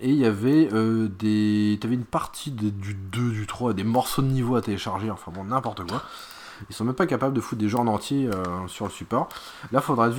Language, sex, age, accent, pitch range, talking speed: French, male, 20-39, French, 110-155 Hz, 260 wpm